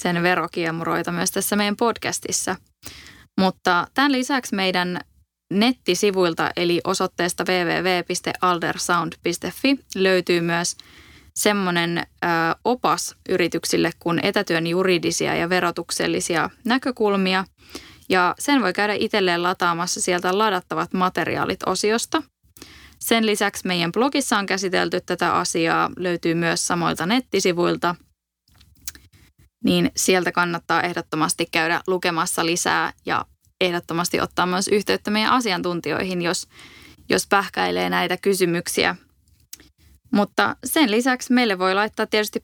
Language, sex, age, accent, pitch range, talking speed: Finnish, female, 20-39, native, 170-210 Hz, 100 wpm